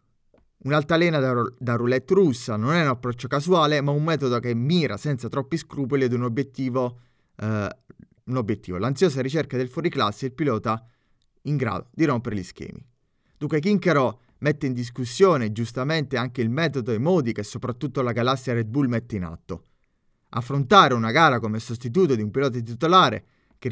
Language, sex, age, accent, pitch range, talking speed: Italian, male, 30-49, native, 120-150 Hz, 170 wpm